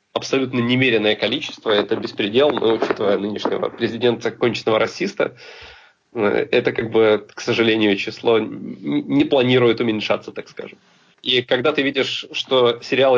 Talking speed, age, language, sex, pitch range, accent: 125 wpm, 20-39, Russian, male, 115-155 Hz, native